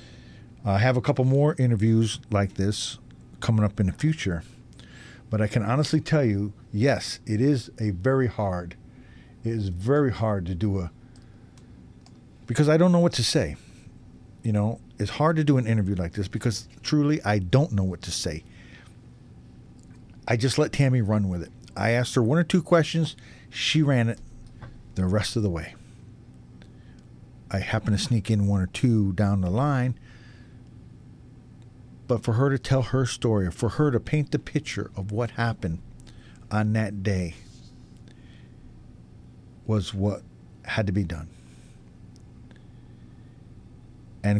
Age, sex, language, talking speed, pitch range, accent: 50-69, male, English, 155 wpm, 100-125 Hz, American